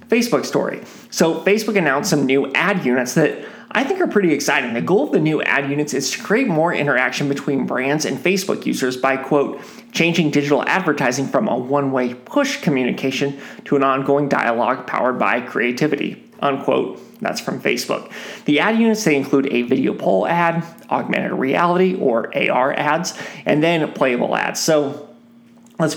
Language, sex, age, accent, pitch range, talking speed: English, male, 30-49, American, 140-185 Hz, 170 wpm